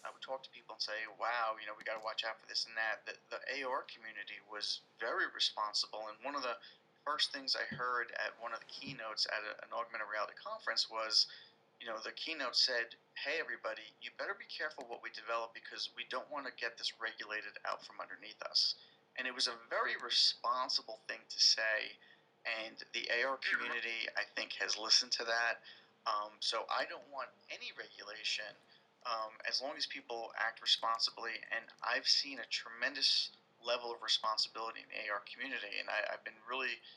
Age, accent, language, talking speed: 40-59, American, English, 200 wpm